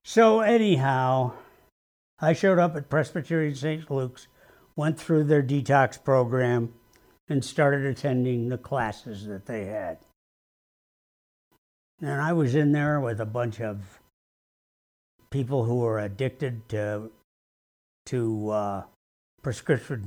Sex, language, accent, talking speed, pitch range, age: male, English, American, 115 wpm, 115-155 Hz, 60-79